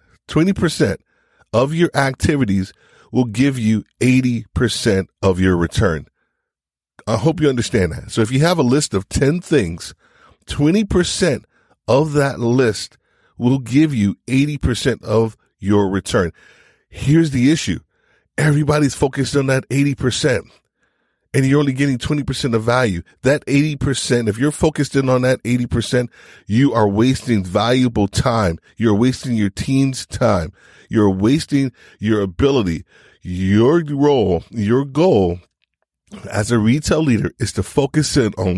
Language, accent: English, American